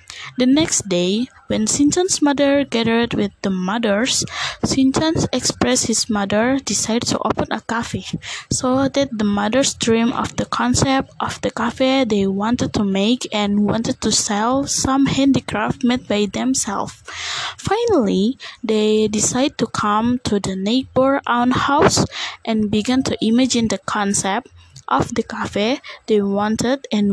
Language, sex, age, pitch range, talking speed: Indonesian, female, 20-39, 210-270 Hz, 145 wpm